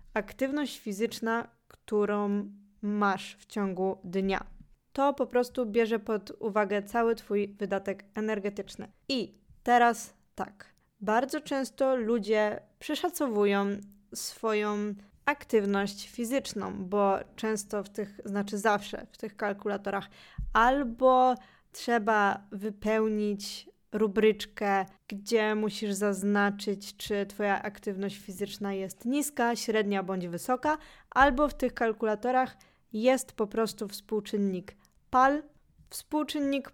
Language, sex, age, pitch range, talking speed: Polish, female, 20-39, 200-245 Hz, 100 wpm